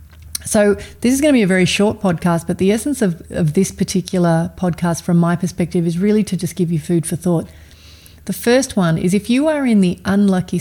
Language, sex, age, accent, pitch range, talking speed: English, female, 30-49, Australian, 165-185 Hz, 220 wpm